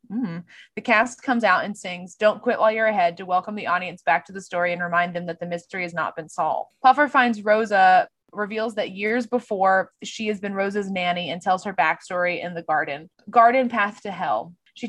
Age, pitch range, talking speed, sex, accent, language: 20-39, 180-240 Hz, 220 wpm, female, American, English